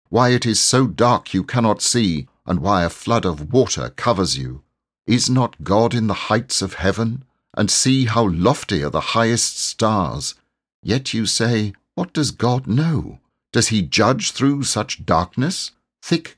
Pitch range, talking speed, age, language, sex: 95-125 Hz, 170 wpm, 60-79, English, male